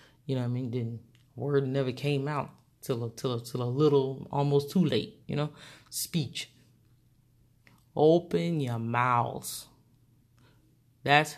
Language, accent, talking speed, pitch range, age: English, American, 140 wpm, 120-150 Hz, 30-49